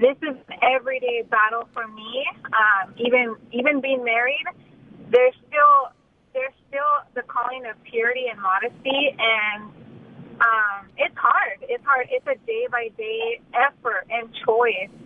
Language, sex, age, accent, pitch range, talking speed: English, female, 20-39, American, 235-275 Hz, 135 wpm